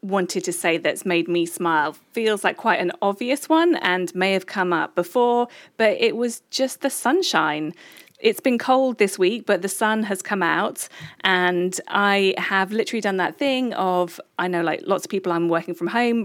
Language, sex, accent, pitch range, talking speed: English, female, British, 175-220 Hz, 200 wpm